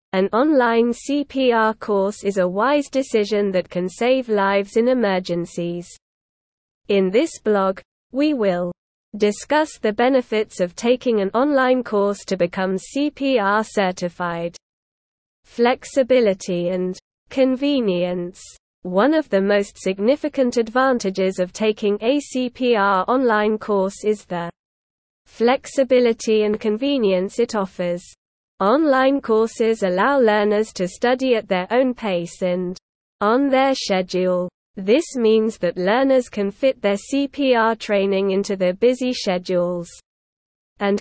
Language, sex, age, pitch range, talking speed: English, female, 20-39, 190-250 Hz, 120 wpm